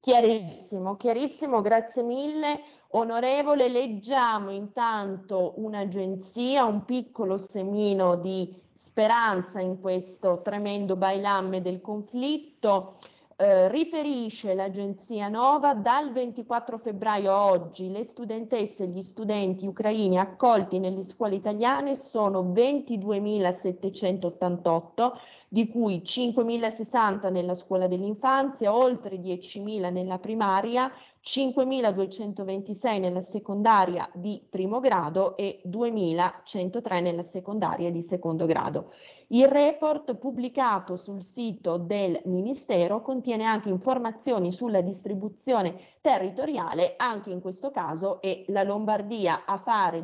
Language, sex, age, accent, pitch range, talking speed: Italian, female, 30-49, native, 190-240 Hz, 100 wpm